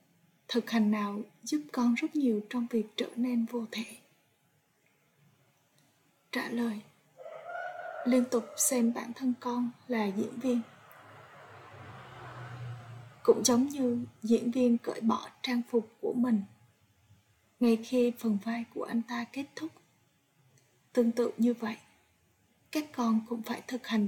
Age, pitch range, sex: 20-39, 210-245 Hz, female